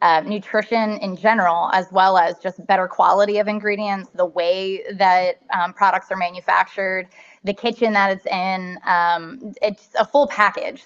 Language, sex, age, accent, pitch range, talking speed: English, female, 20-39, American, 185-215 Hz, 160 wpm